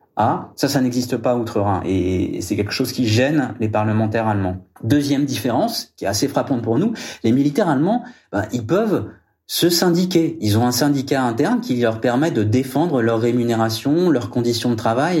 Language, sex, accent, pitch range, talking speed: French, male, French, 115-155 Hz, 185 wpm